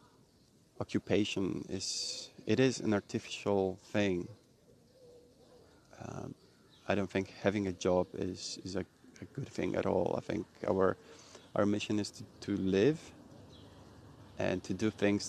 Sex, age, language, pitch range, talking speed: male, 30-49, English, 95-110 Hz, 135 wpm